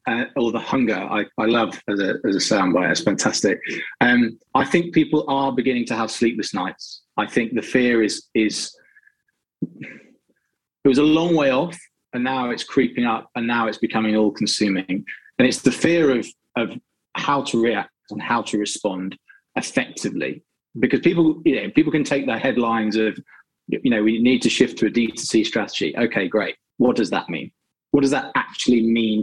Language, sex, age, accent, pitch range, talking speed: English, male, 20-39, British, 110-135 Hz, 185 wpm